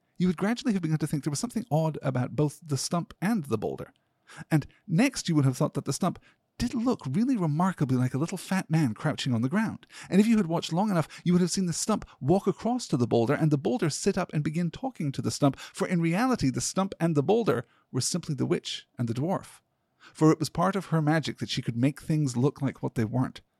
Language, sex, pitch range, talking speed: English, male, 125-165 Hz, 255 wpm